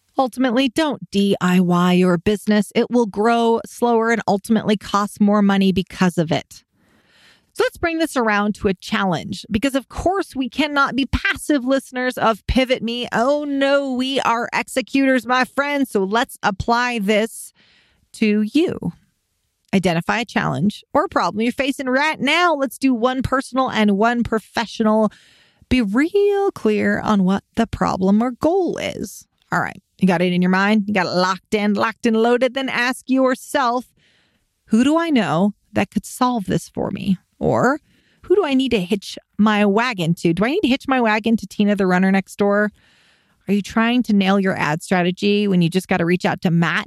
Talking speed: 185 wpm